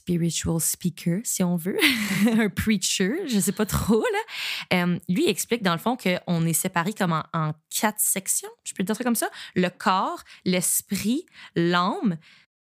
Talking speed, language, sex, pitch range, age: 180 wpm, French, female, 170-205 Hz, 20-39